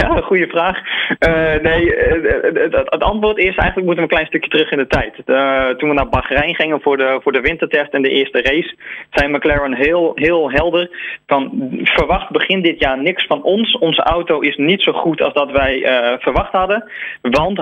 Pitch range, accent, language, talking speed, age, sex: 135-175 Hz, Dutch, Dutch, 210 wpm, 20-39, male